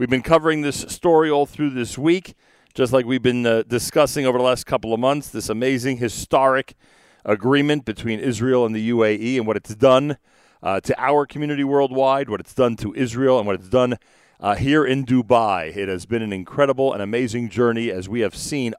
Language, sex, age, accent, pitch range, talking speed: English, male, 40-59, American, 110-135 Hz, 205 wpm